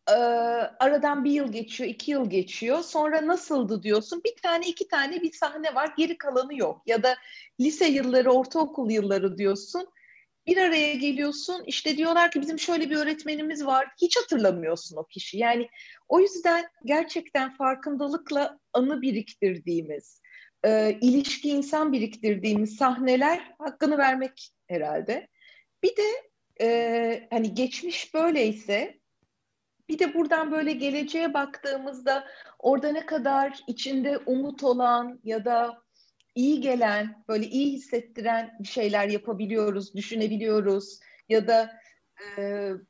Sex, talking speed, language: female, 125 wpm, Turkish